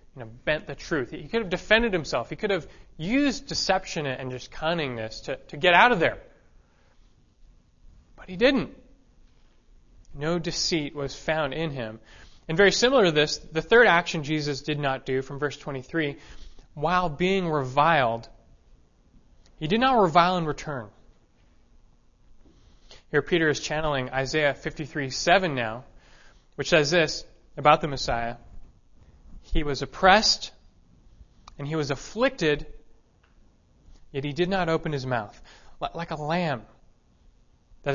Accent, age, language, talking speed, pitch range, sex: American, 20-39, English, 140 wpm, 125-175 Hz, male